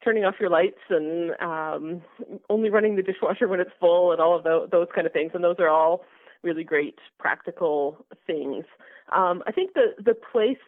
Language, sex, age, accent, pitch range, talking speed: English, female, 30-49, American, 170-215 Hz, 195 wpm